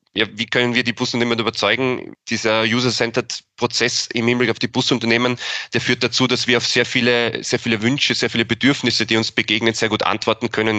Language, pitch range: German, 100-120 Hz